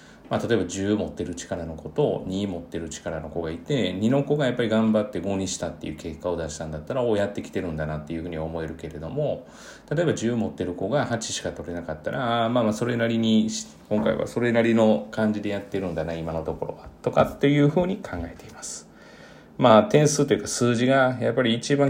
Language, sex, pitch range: Japanese, male, 85-110 Hz